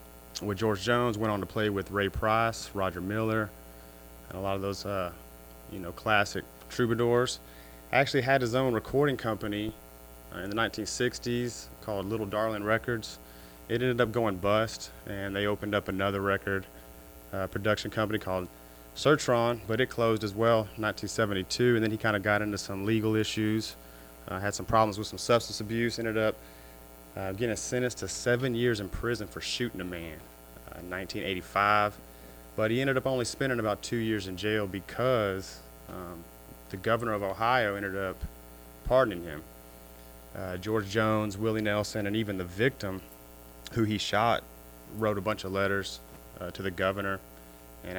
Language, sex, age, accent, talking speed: English, male, 30-49, American, 170 wpm